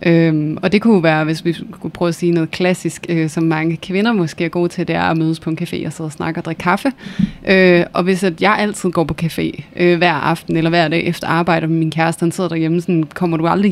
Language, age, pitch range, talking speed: Danish, 20-39, 165-185 Hz, 265 wpm